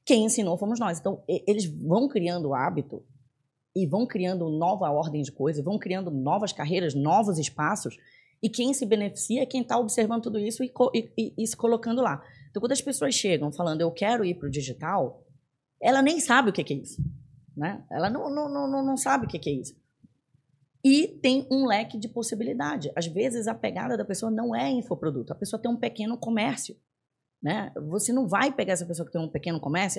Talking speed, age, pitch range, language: 205 wpm, 20-39, 150-240 Hz, Portuguese